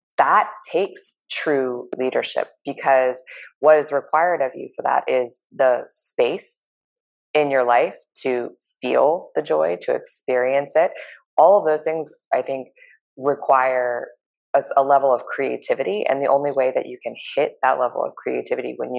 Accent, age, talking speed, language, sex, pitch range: American, 20-39, 160 wpm, English, female, 125-155 Hz